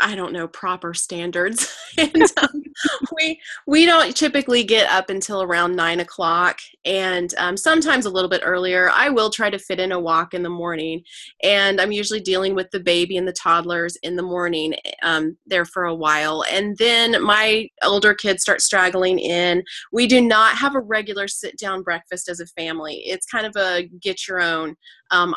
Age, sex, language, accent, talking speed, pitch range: 20-39, female, English, American, 190 wpm, 175-200 Hz